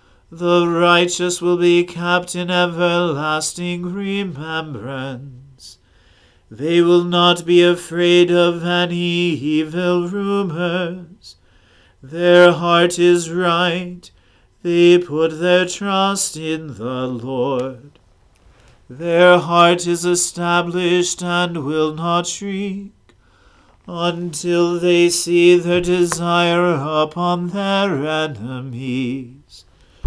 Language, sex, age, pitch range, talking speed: English, male, 40-59, 155-175 Hz, 90 wpm